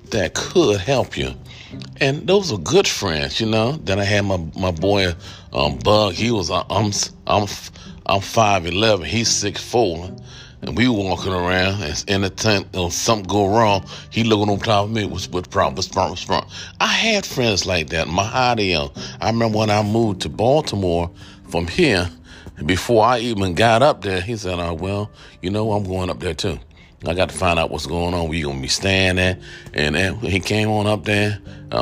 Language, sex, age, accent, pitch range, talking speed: English, male, 40-59, American, 85-110 Hz, 200 wpm